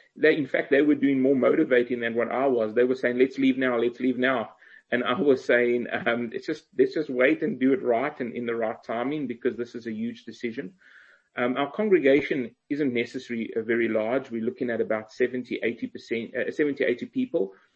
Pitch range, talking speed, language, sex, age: 120-135 Hz, 215 wpm, English, male, 30-49